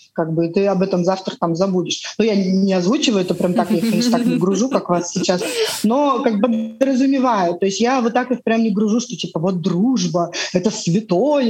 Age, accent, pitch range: 20-39, native, 200-260 Hz